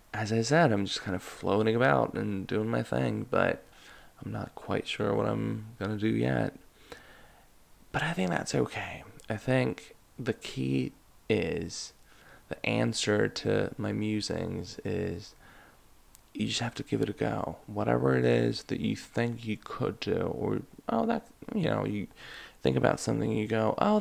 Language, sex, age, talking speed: English, male, 20-39, 170 wpm